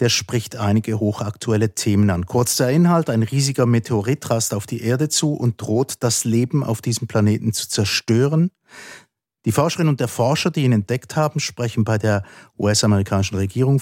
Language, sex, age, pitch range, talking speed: German, male, 50-69, 105-130 Hz, 175 wpm